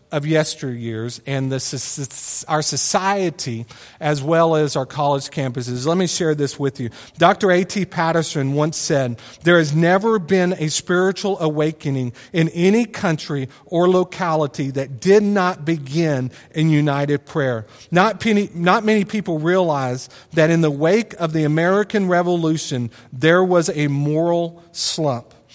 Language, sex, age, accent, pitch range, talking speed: English, male, 40-59, American, 140-180 Hz, 145 wpm